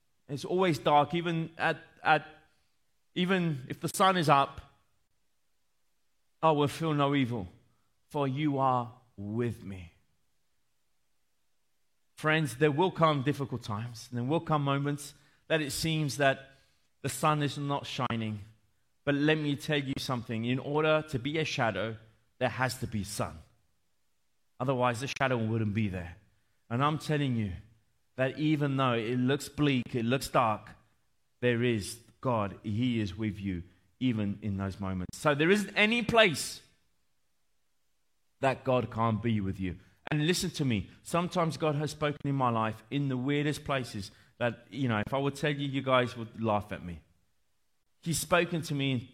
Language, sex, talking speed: Italian, male, 165 wpm